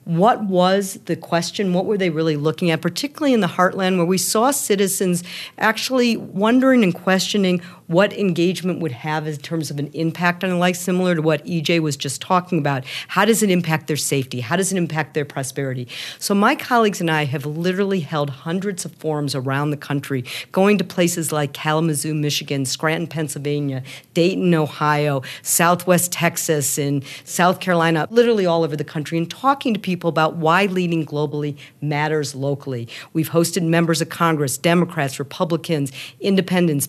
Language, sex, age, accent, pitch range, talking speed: English, female, 50-69, American, 145-180 Hz, 170 wpm